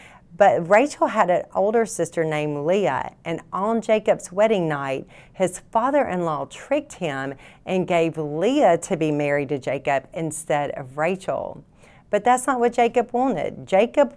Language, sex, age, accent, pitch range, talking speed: English, female, 40-59, American, 160-225 Hz, 150 wpm